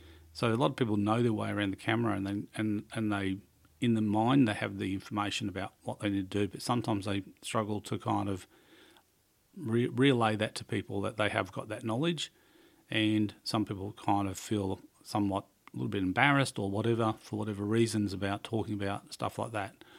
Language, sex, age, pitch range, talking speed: English, male, 40-59, 100-115 Hz, 205 wpm